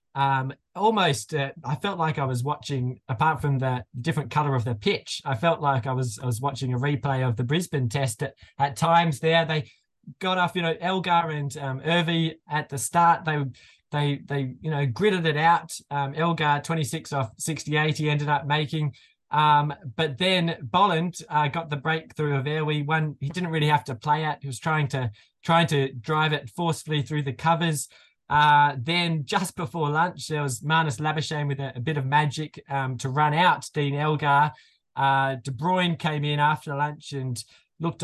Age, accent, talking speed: 20-39, Australian, 195 wpm